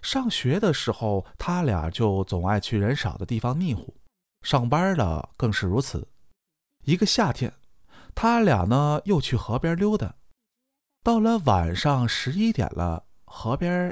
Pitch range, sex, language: 105-170 Hz, male, Chinese